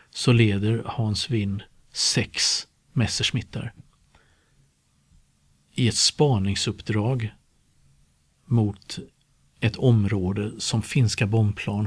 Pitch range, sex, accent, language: 105-120 Hz, male, native, Swedish